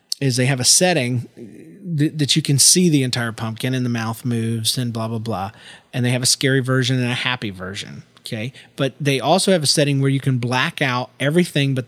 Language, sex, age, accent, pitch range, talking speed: English, male, 30-49, American, 120-155 Hz, 220 wpm